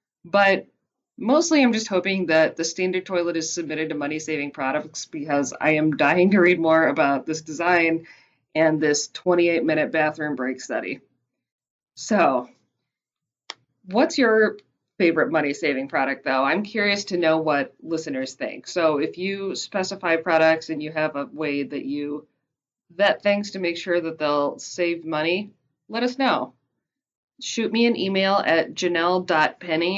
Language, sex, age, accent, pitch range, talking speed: English, female, 20-39, American, 155-200 Hz, 150 wpm